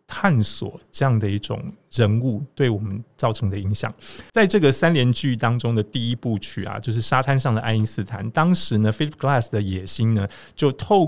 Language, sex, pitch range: Chinese, male, 105-135 Hz